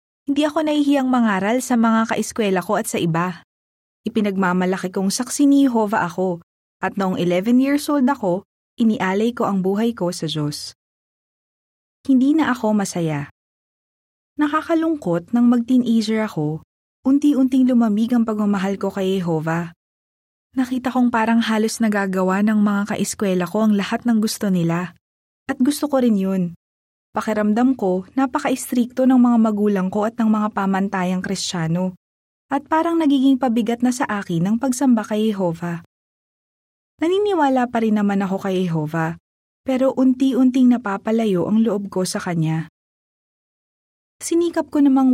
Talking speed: 140 wpm